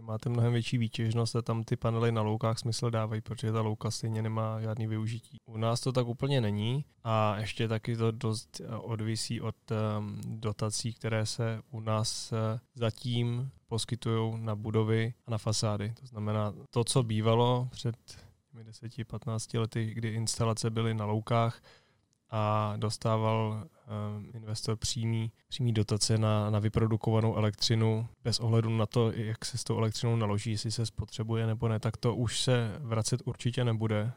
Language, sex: Czech, male